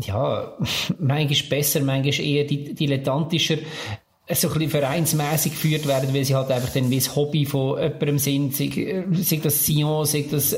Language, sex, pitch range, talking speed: German, male, 140-155 Hz, 175 wpm